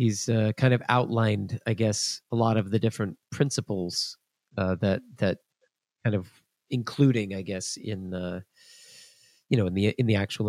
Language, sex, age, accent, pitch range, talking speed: English, male, 40-59, American, 105-135 Hz, 170 wpm